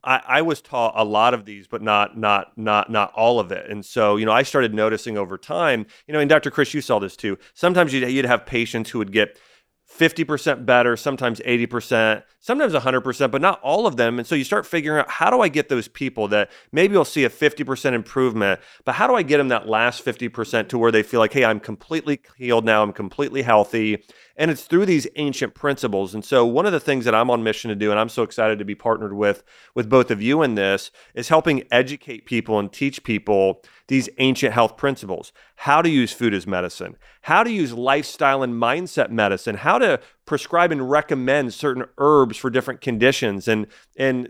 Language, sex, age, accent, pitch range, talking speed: English, male, 30-49, American, 110-140 Hz, 220 wpm